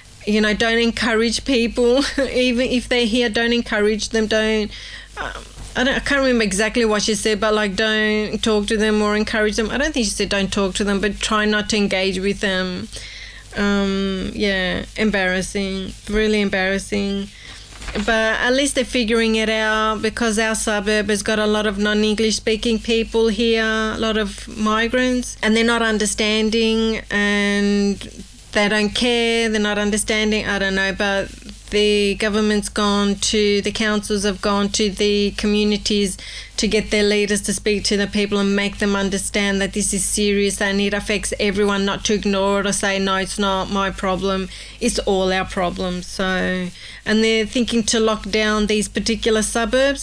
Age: 30-49